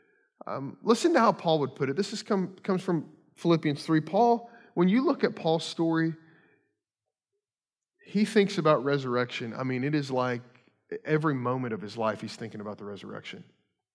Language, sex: English, male